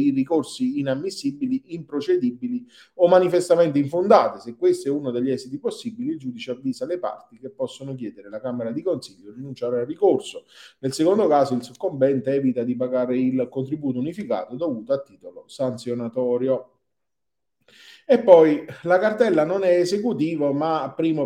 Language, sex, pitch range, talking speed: Italian, male, 130-165 Hz, 150 wpm